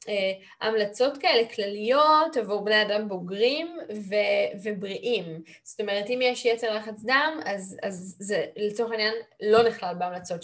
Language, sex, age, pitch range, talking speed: Hebrew, female, 20-39, 195-230 Hz, 145 wpm